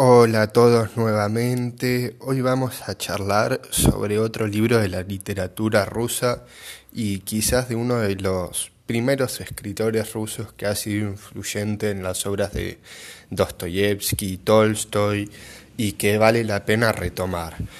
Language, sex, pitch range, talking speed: Spanish, male, 100-120 Hz, 140 wpm